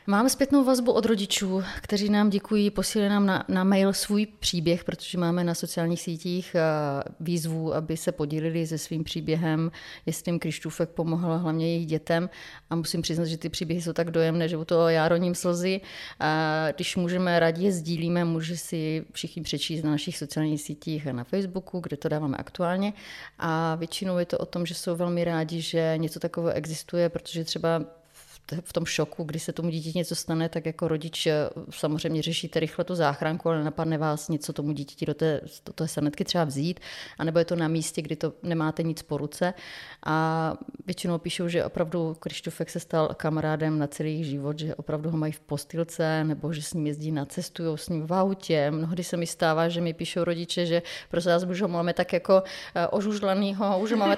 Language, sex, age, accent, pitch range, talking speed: Czech, female, 30-49, native, 160-180 Hz, 190 wpm